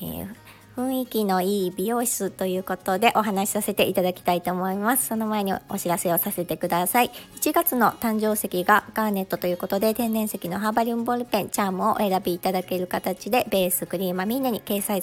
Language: Japanese